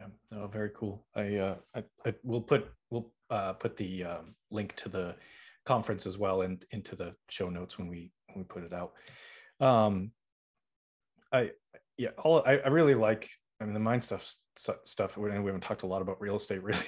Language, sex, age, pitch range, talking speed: English, male, 30-49, 95-120 Hz, 200 wpm